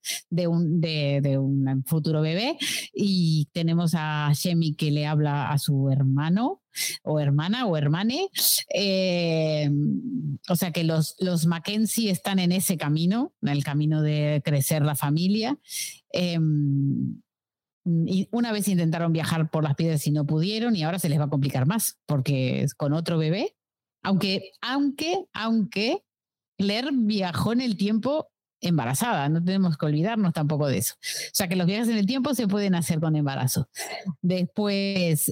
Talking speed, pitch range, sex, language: 160 wpm, 150-205 Hz, female, Spanish